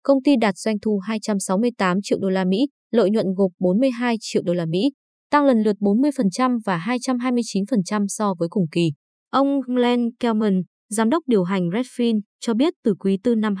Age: 20-39